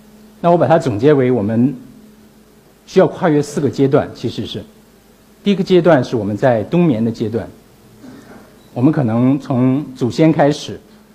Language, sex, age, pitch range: Chinese, male, 50-69, 115-180 Hz